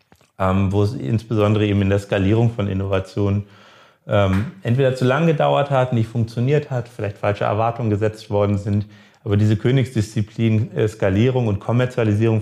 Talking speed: 150 wpm